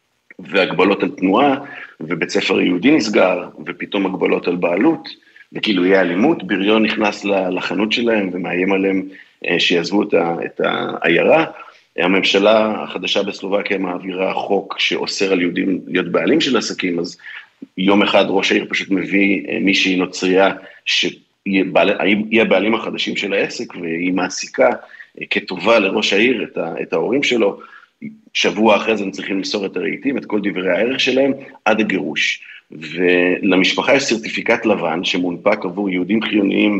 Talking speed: 130 wpm